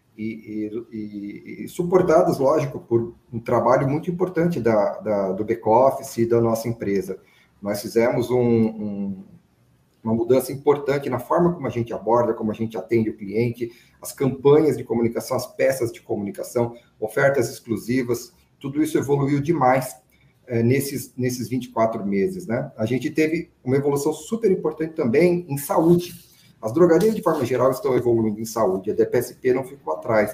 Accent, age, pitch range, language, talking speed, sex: Brazilian, 40-59, 115-140 Hz, Portuguese, 160 wpm, male